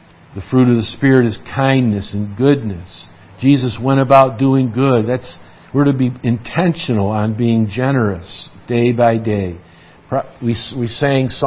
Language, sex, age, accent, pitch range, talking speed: English, male, 50-69, American, 110-140 Hz, 150 wpm